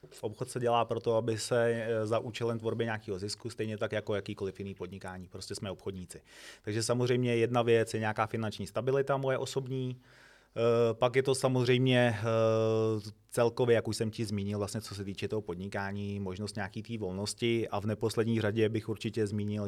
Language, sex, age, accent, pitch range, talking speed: Czech, male, 30-49, native, 100-115 Hz, 175 wpm